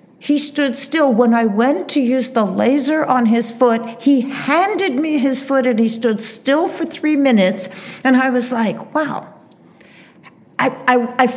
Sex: female